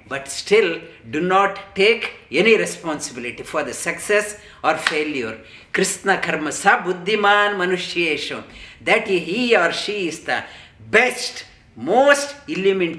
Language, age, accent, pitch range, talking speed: English, 50-69, Indian, 150-200 Hz, 120 wpm